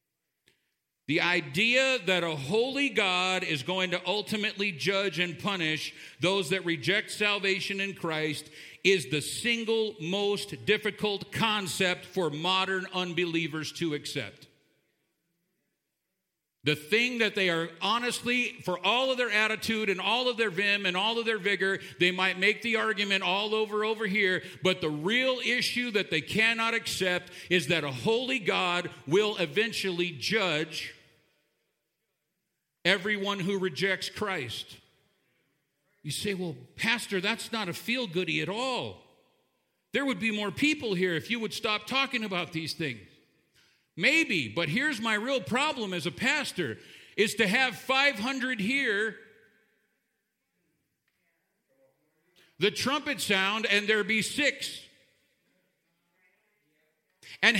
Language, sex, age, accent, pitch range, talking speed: English, male, 50-69, American, 175-225 Hz, 130 wpm